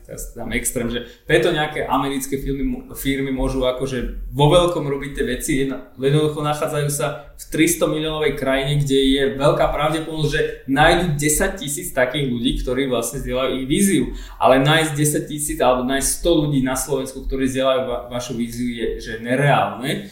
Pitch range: 130-155 Hz